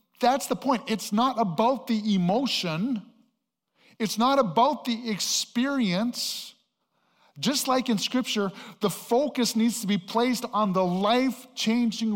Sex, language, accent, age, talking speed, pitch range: male, English, American, 50-69, 130 wpm, 160-225 Hz